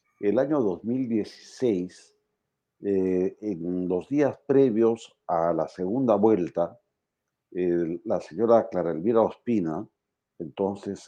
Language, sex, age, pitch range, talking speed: Spanish, male, 50-69, 95-120 Hz, 105 wpm